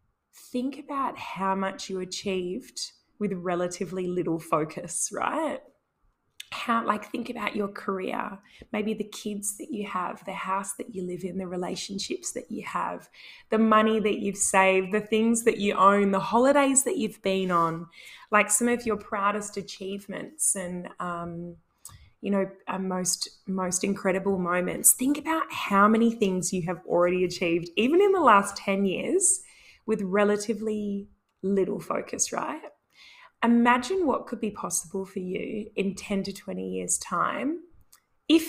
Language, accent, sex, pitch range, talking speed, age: English, Australian, female, 185-230 Hz, 155 wpm, 20-39